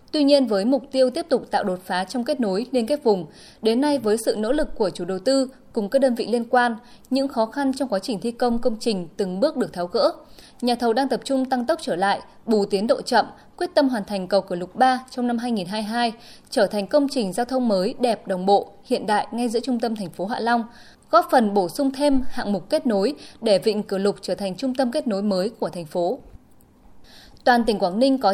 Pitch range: 205-265 Hz